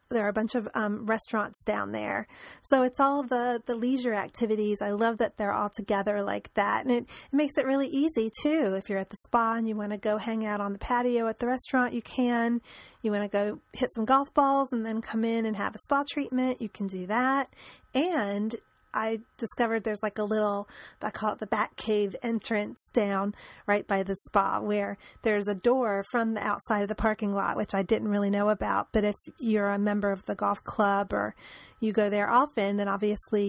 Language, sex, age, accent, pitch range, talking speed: English, female, 30-49, American, 205-245 Hz, 220 wpm